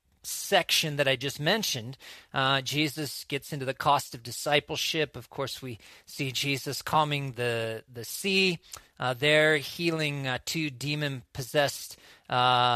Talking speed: 140 wpm